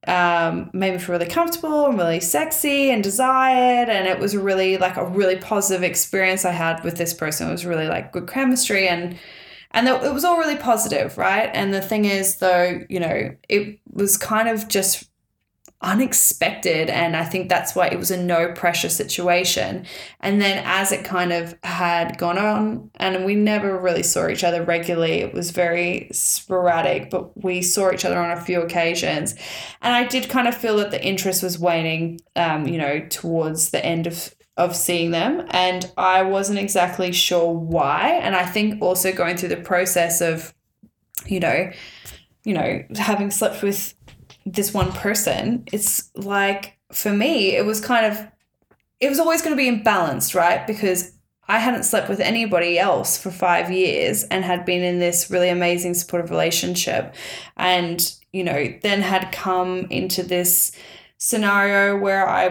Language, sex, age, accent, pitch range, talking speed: English, female, 10-29, Australian, 175-205 Hz, 180 wpm